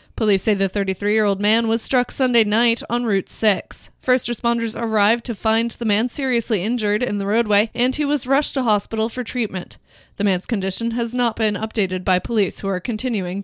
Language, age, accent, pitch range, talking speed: English, 20-39, American, 205-245 Hz, 195 wpm